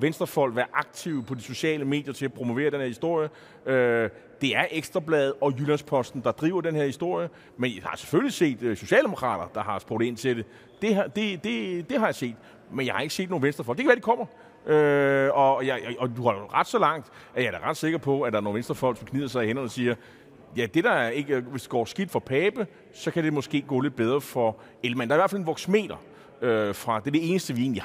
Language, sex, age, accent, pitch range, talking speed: Danish, male, 30-49, native, 115-155 Hz, 245 wpm